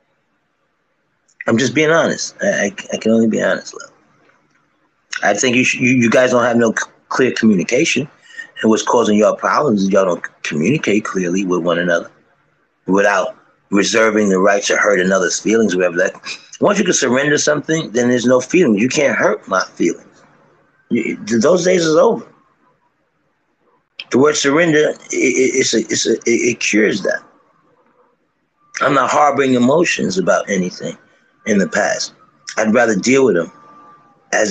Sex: male